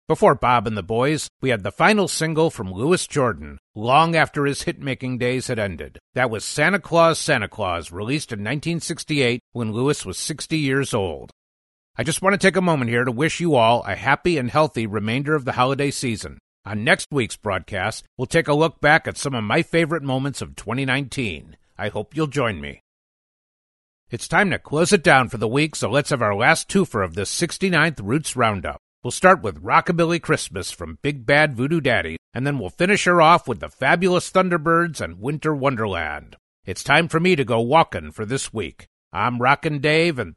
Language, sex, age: English, male, 50-69